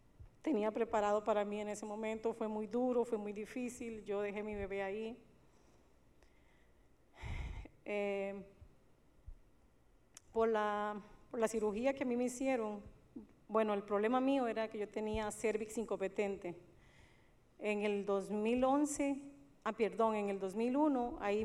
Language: Spanish